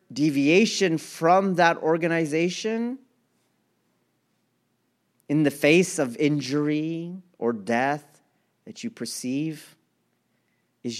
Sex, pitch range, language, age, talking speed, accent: male, 115-165 Hz, English, 40-59, 80 wpm, American